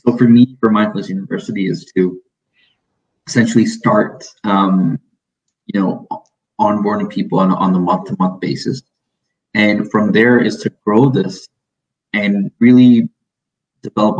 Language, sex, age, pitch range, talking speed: English, male, 20-39, 100-125 Hz, 125 wpm